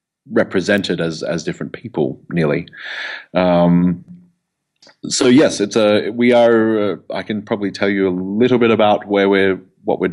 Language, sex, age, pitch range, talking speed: English, male, 30-49, 85-100 Hz, 160 wpm